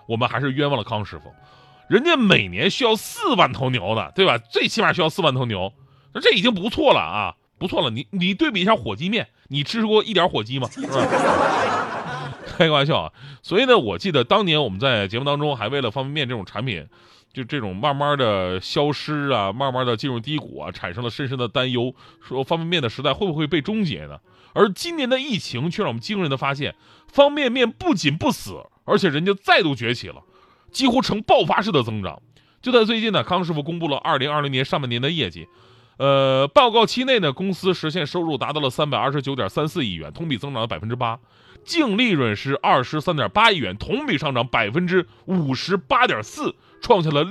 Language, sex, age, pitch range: Chinese, male, 30-49, 120-185 Hz